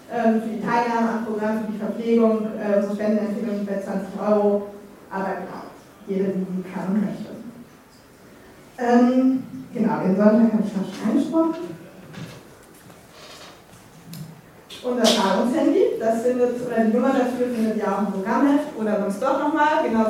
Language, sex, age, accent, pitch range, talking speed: German, female, 20-39, German, 205-245 Hz, 150 wpm